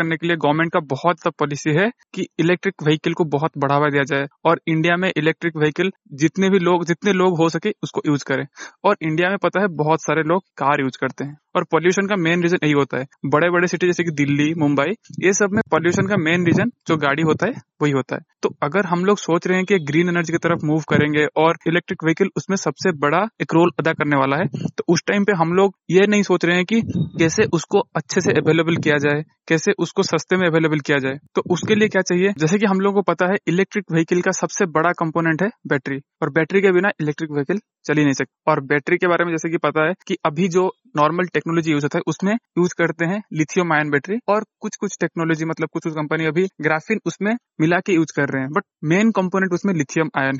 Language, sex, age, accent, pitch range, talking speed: Hindi, male, 20-39, native, 155-190 Hz, 235 wpm